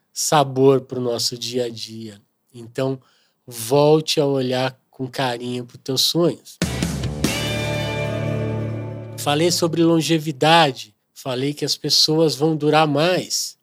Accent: Brazilian